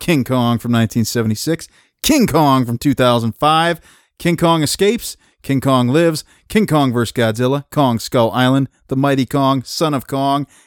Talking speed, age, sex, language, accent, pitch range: 150 wpm, 30-49, male, English, American, 115-145 Hz